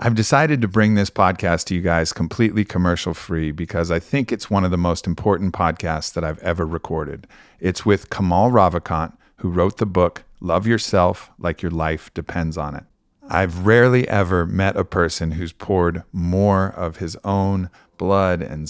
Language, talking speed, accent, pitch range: English, 175 wpm, American, 85-100 Hz